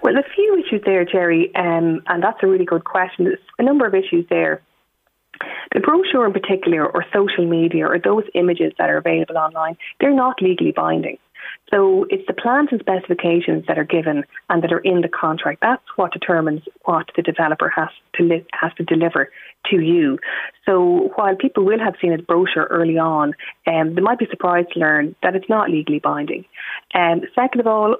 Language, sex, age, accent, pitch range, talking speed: English, female, 30-49, Irish, 165-225 Hz, 195 wpm